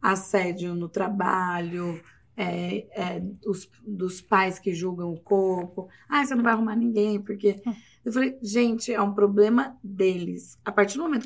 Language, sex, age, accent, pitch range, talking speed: Portuguese, female, 20-39, Brazilian, 195-225 Hz, 160 wpm